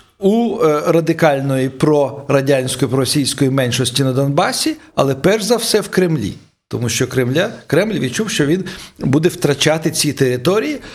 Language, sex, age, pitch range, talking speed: Ukrainian, male, 50-69, 125-165 Hz, 135 wpm